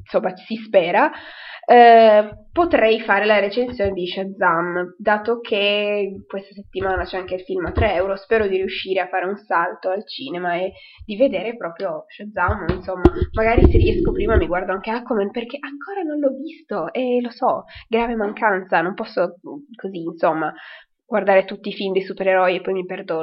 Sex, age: female, 20-39